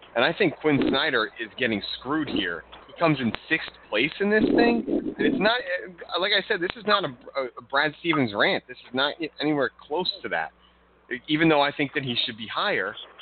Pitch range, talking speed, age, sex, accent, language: 105-150 Hz, 215 wpm, 30-49, male, American, English